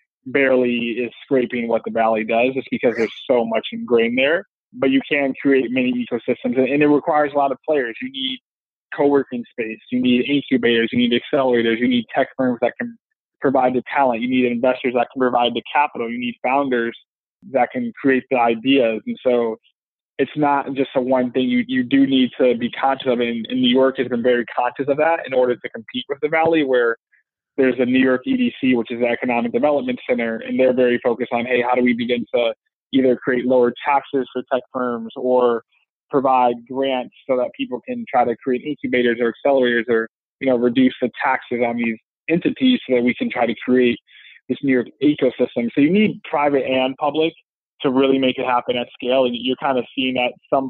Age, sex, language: 20-39, male, English